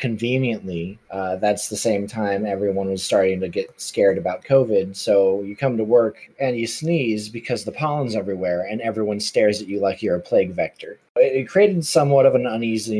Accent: American